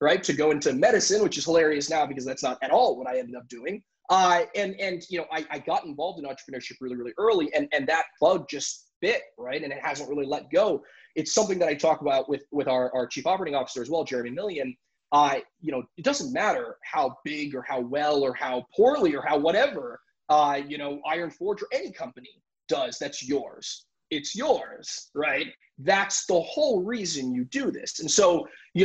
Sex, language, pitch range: male, English, 135-195 Hz